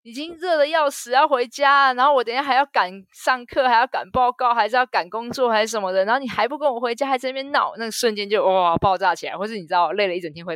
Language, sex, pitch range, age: Chinese, female, 170-230 Hz, 20-39